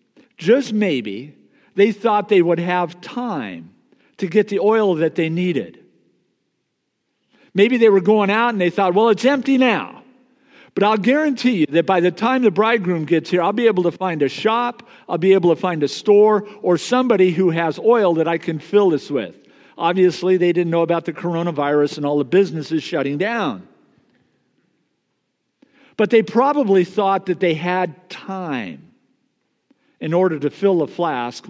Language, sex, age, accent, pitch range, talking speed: English, male, 50-69, American, 170-235 Hz, 175 wpm